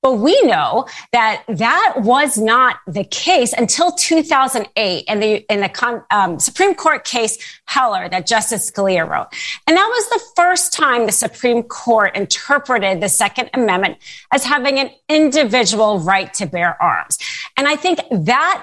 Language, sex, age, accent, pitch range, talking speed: English, female, 30-49, American, 200-275 Hz, 160 wpm